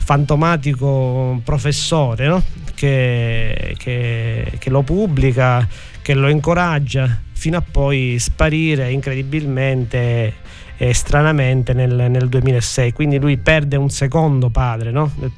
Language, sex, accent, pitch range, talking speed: Italian, male, native, 120-145 Hz, 100 wpm